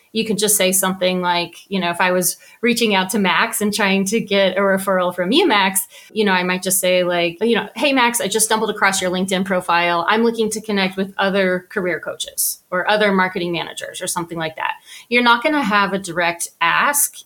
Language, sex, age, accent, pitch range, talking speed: English, female, 30-49, American, 180-215 Hz, 230 wpm